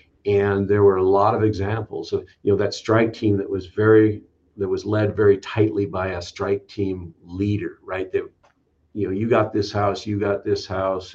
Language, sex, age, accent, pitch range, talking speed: English, male, 50-69, American, 95-110 Hz, 205 wpm